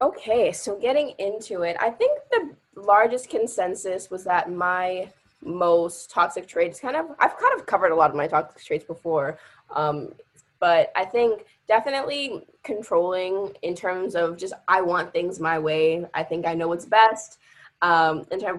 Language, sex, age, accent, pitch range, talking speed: English, female, 10-29, American, 170-215 Hz, 165 wpm